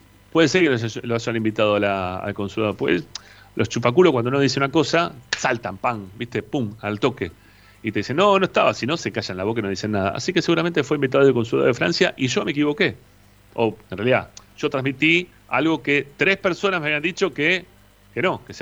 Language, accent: Spanish, Argentinian